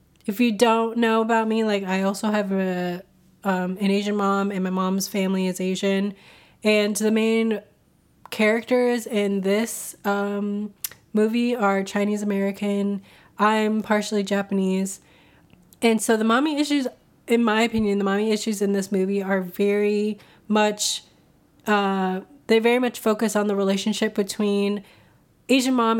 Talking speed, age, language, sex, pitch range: 145 wpm, 20-39, English, female, 195-225 Hz